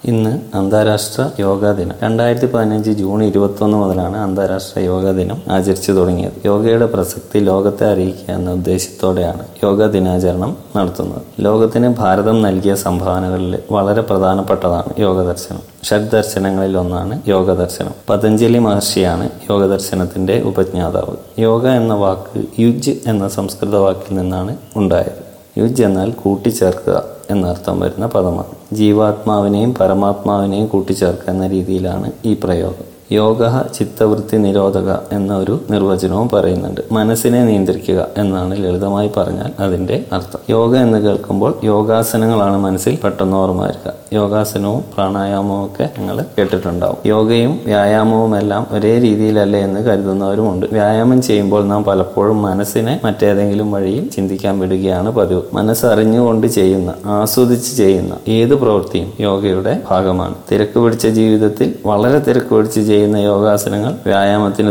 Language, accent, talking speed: Malayalam, native, 110 wpm